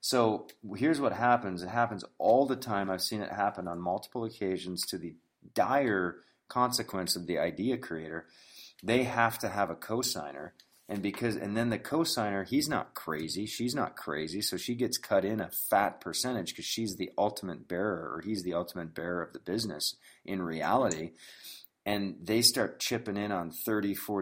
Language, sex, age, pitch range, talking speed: English, male, 30-49, 85-105 Hz, 180 wpm